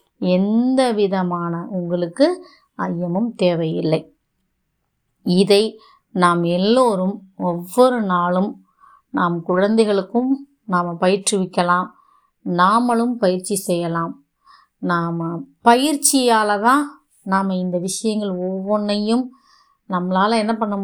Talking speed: 80 wpm